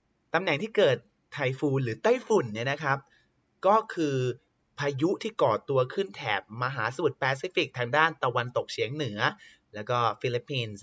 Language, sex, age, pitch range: Thai, male, 30-49, 115-160 Hz